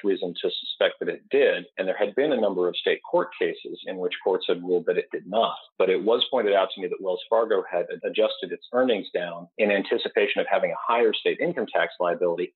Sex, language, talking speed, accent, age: male, English, 240 wpm, American, 40-59